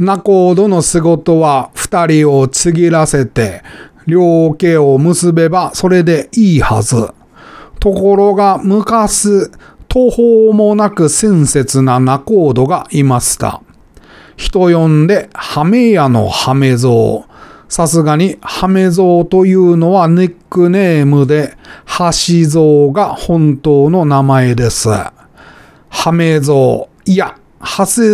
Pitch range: 145-190 Hz